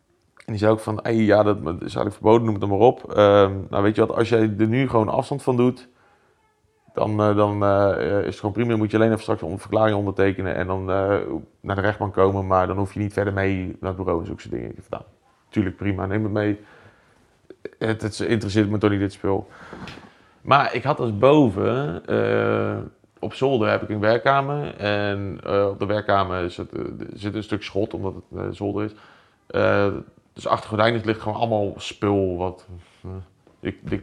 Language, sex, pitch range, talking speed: Dutch, male, 100-110 Hz, 210 wpm